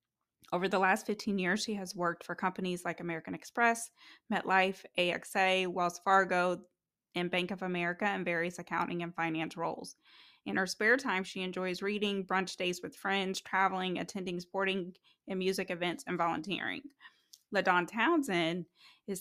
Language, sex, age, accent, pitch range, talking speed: English, female, 20-39, American, 170-195 Hz, 155 wpm